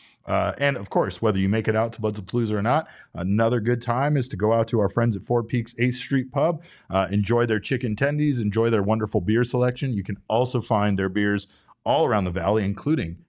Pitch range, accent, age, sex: 100-120 Hz, American, 30-49, male